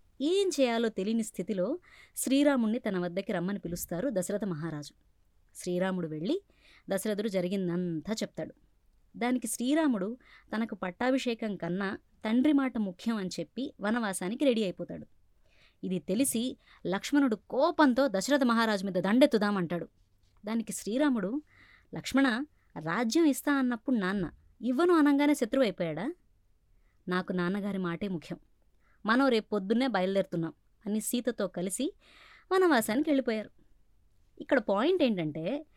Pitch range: 185-270 Hz